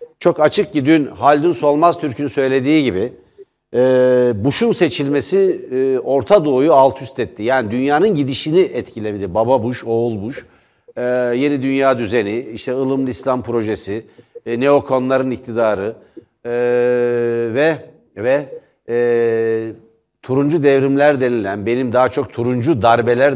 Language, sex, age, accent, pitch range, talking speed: Turkish, male, 60-79, native, 120-155 Hz, 125 wpm